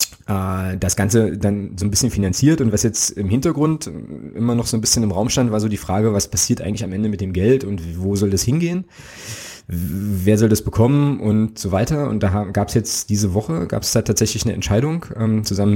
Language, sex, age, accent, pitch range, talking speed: German, male, 20-39, German, 95-115 Hz, 220 wpm